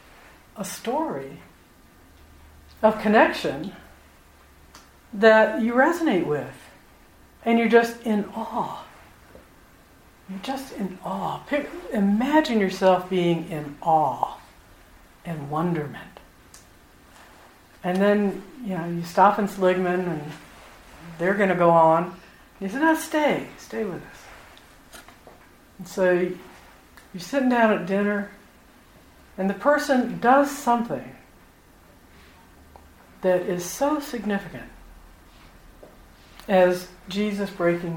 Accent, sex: American, female